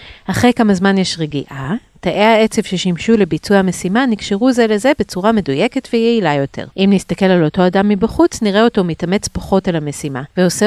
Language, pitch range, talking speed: Hebrew, 175-220 Hz, 170 wpm